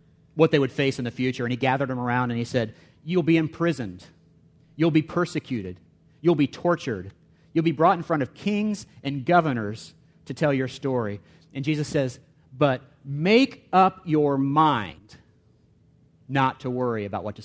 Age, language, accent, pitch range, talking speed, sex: 40-59, English, American, 120-160 Hz, 175 wpm, male